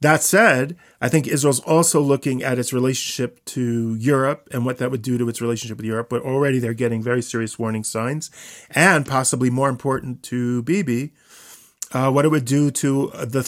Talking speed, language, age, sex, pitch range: 190 wpm, English, 40-59, male, 120-150 Hz